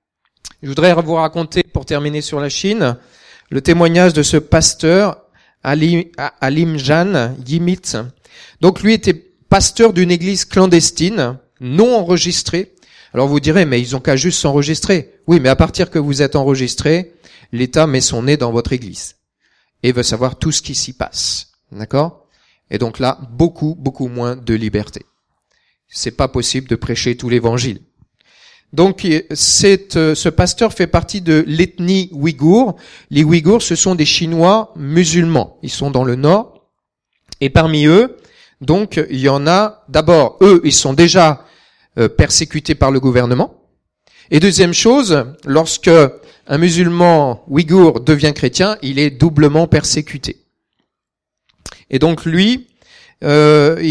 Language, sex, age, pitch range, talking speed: French, male, 40-59, 135-175 Hz, 145 wpm